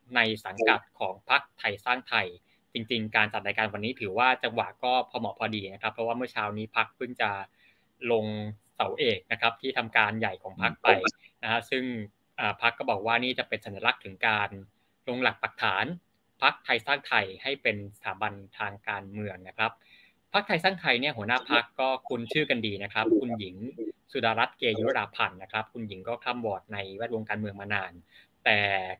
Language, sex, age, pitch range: Thai, male, 20-39, 105-125 Hz